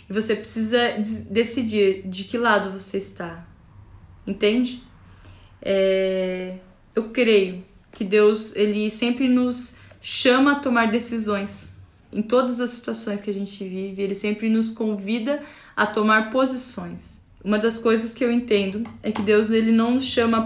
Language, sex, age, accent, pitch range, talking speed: Portuguese, female, 10-29, Brazilian, 205-240 Hz, 145 wpm